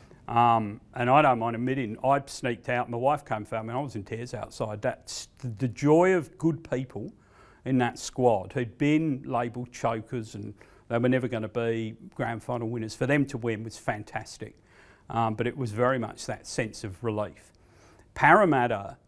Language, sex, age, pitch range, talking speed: English, male, 50-69, 115-135 Hz, 190 wpm